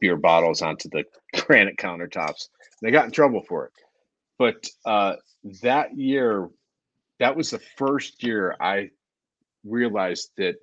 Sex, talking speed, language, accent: male, 135 wpm, English, American